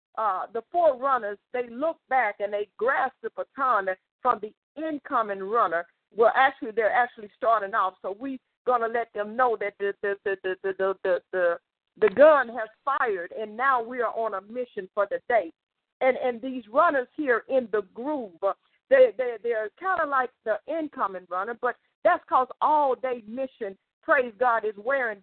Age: 50-69